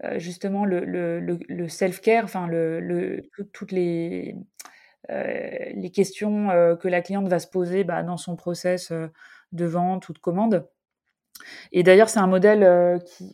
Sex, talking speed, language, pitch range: female, 155 wpm, French, 165-195 Hz